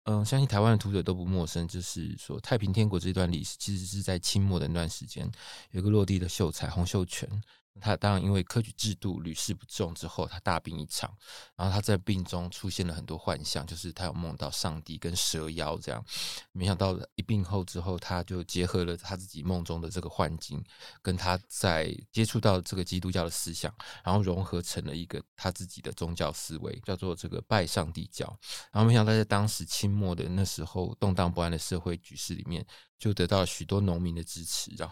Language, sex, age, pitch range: Chinese, male, 20-39, 85-105 Hz